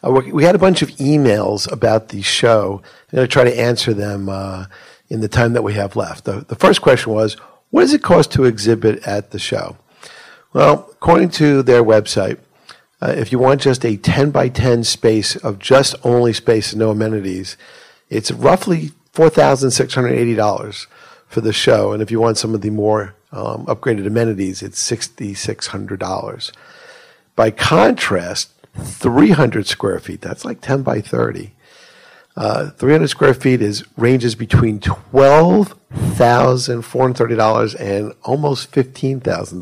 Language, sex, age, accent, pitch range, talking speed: English, male, 50-69, American, 110-135 Hz, 165 wpm